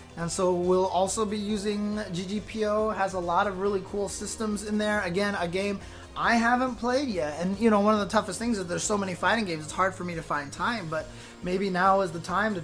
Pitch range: 175-220 Hz